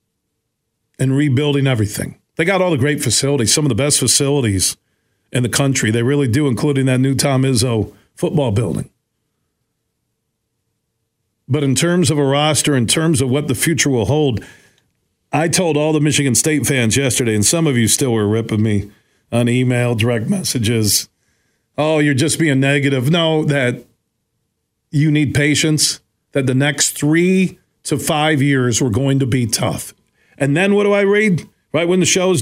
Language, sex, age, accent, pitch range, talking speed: English, male, 40-59, American, 120-160 Hz, 175 wpm